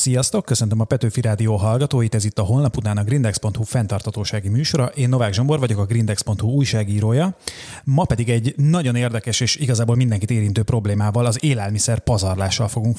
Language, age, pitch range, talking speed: Hungarian, 30-49, 110-130 Hz, 165 wpm